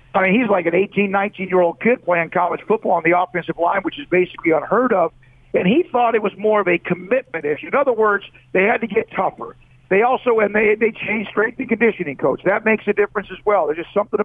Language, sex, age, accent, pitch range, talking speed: English, male, 50-69, American, 175-225 Hz, 245 wpm